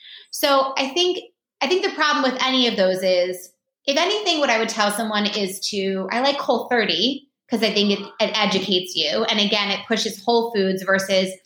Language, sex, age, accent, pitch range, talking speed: English, female, 20-39, American, 195-250 Hz, 200 wpm